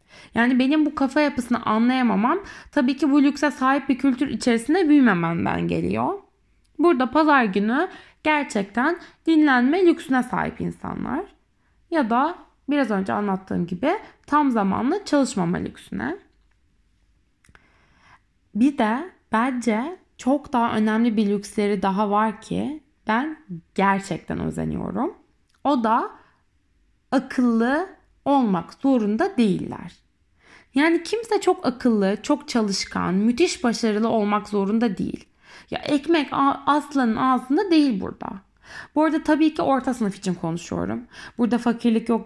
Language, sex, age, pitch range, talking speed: Turkish, female, 20-39, 215-290 Hz, 115 wpm